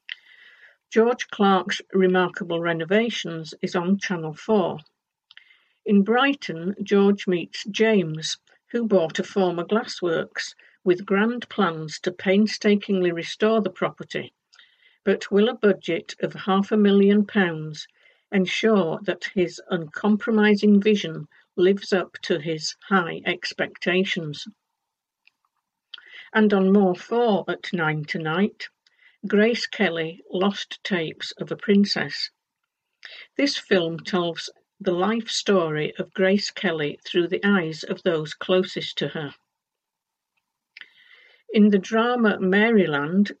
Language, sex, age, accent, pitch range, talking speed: English, female, 60-79, British, 180-210 Hz, 110 wpm